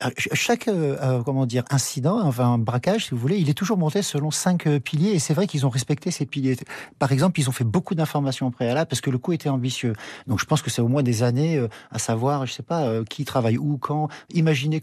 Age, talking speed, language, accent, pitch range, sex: 40-59, 255 wpm, French, French, 125-160 Hz, male